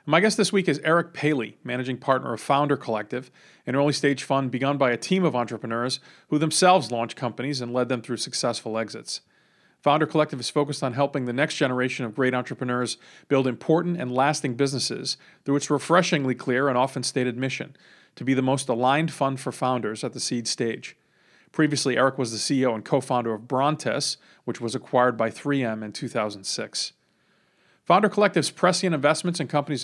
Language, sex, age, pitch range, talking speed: English, male, 40-59, 125-150 Hz, 185 wpm